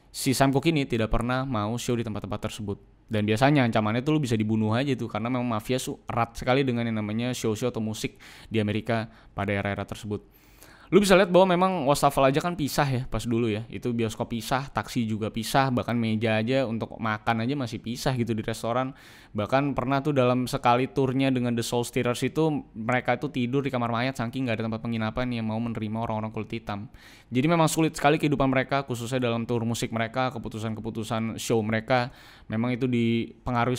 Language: Indonesian